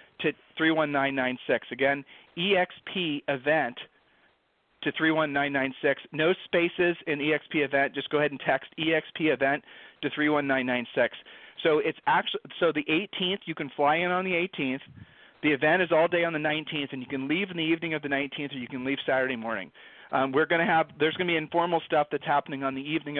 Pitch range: 135-165 Hz